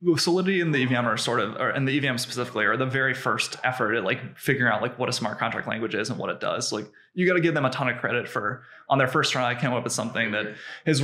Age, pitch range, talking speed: 20-39, 120-145 Hz, 295 wpm